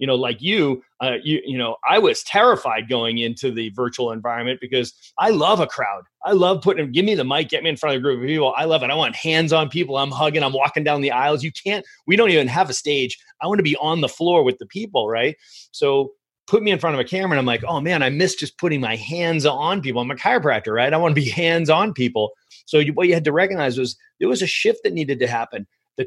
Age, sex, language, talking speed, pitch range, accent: 30-49, male, English, 275 wpm, 125-160 Hz, American